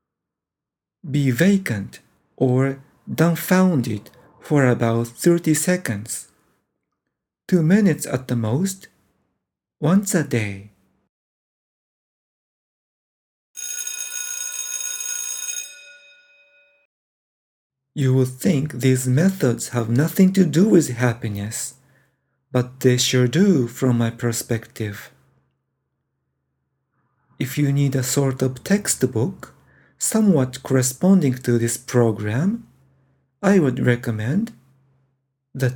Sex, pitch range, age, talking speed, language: male, 125-175 Hz, 50-69, 85 wpm, English